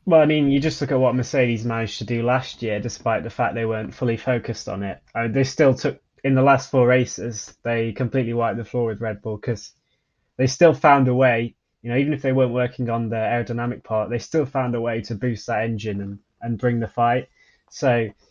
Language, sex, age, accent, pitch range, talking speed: English, male, 20-39, British, 110-125 Hz, 240 wpm